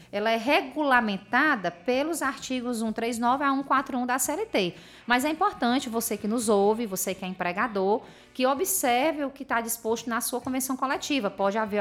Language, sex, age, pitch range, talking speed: Portuguese, female, 20-39, 210-260 Hz, 170 wpm